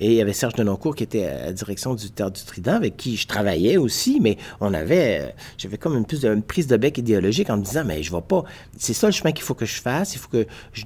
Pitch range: 105-140 Hz